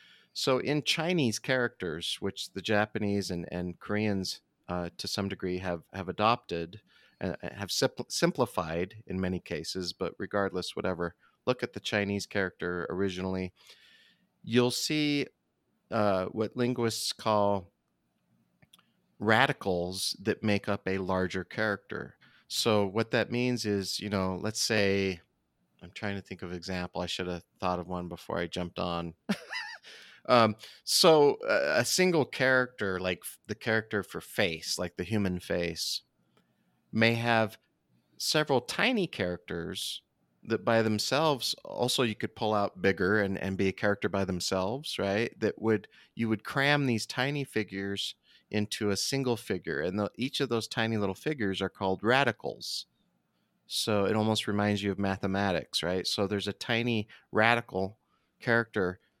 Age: 30-49